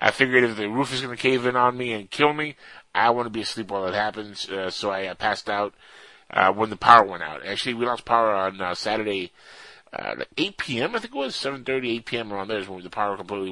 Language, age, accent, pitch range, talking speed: English, 30-49, American, 100-125 Hz, 270 wpm